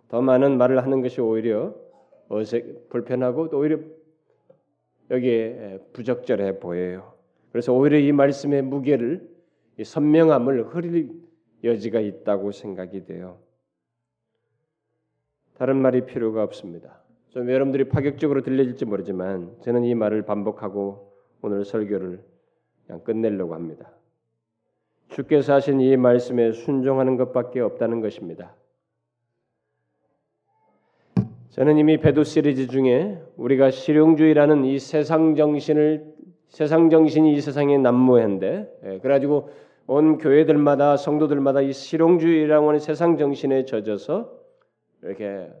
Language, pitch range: Korean, 110-145 Hz